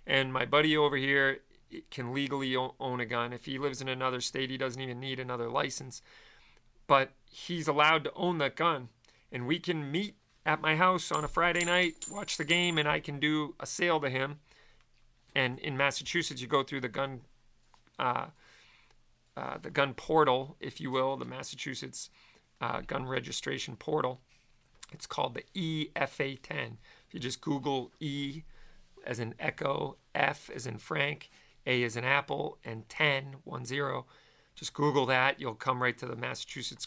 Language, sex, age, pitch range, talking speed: English, male, 40-59, 125-150 Hz, 170 wpm